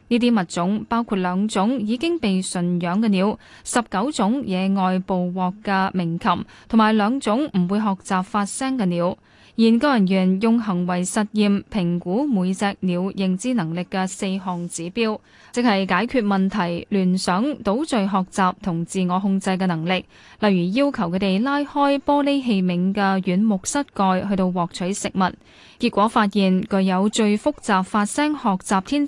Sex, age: female, 10-29